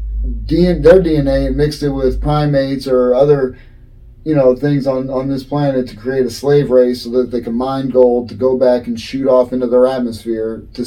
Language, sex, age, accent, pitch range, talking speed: English, male, 30-49, American, 115-140 Hz, 205 wpm